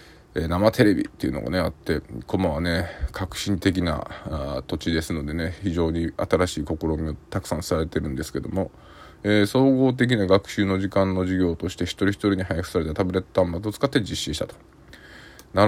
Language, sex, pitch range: Japanese, male, 85-105 Hz